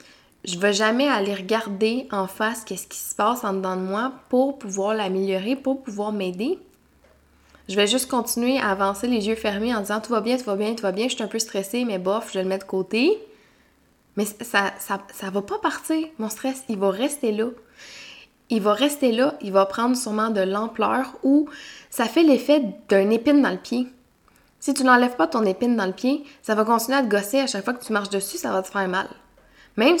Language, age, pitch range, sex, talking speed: French, 20-39, 200-255 Hz, female, 240 wpm